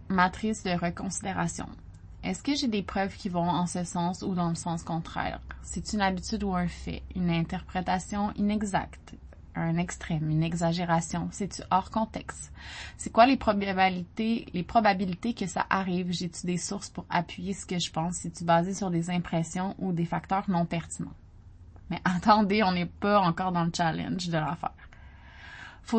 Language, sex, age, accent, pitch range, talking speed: French, female, 20-39, Canadian, 160-195 Hz, 170 wpm